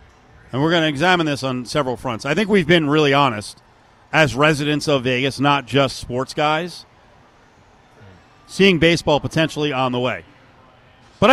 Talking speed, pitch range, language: 160 wpm, 130-175 Hz, English